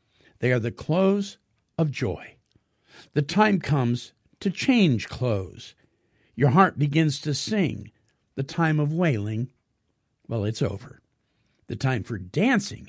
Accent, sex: American, male